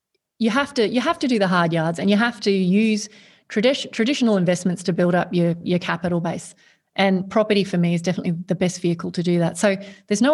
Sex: female